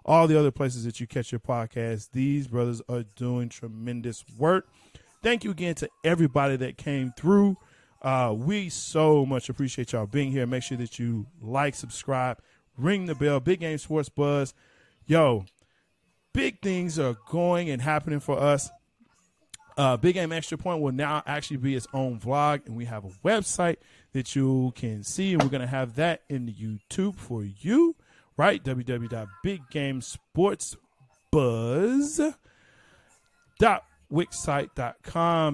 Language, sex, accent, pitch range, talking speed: English, male, American, 120-160 Hz, 145 wpm